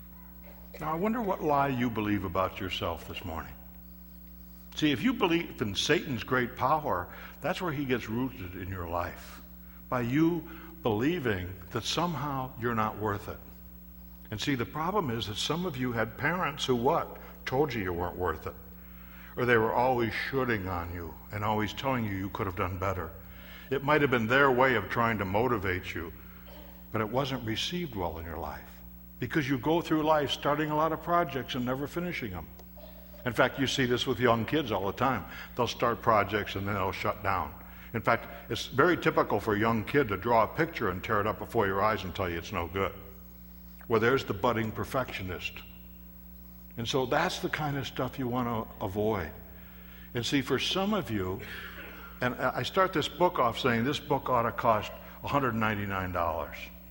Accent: American